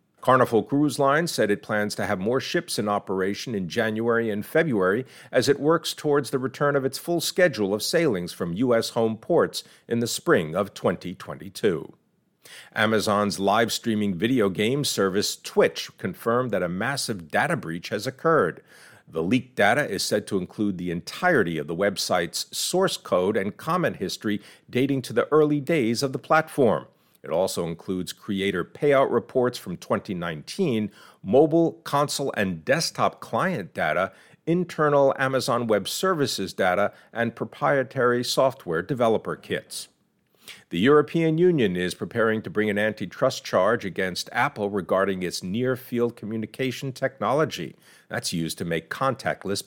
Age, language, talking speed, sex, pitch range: 50-69, English, 145 wpm, male, 105-145 Hz